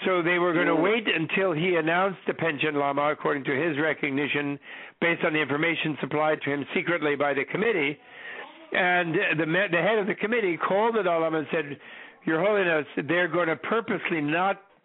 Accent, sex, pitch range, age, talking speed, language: American, male, 155-180 Hz, 60-79, 190 wpm, English